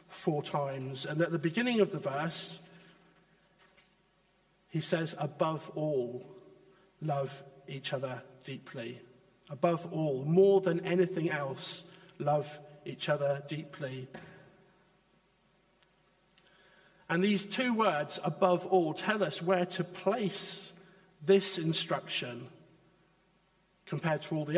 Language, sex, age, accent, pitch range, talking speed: English, male, 50-69, British, 155-185 Hz, 105 wpm